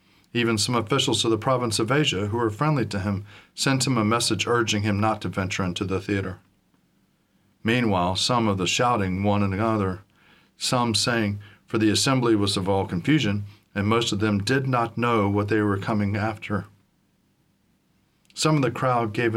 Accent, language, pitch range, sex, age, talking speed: American, English, 105-130 Hz, male, 40-59, 185 wpm